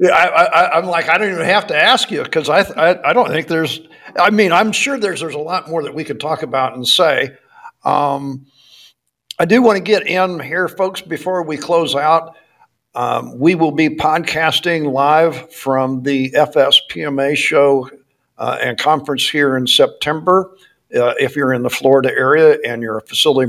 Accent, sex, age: American, male, 50-69